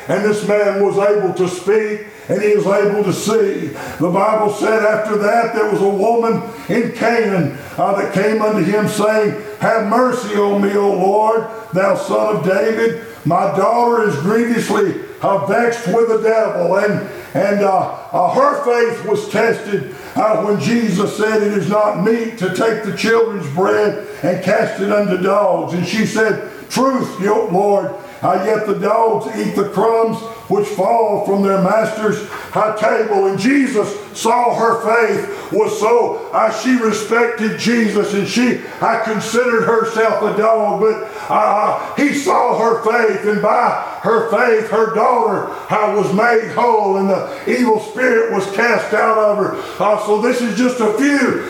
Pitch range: 205-230 Hz